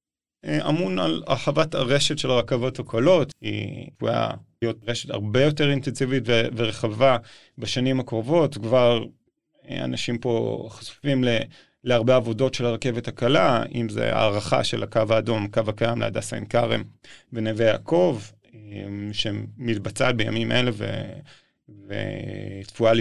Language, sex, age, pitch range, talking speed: Hebrew, male, 30-49, 110-130 Hz, 115 wpm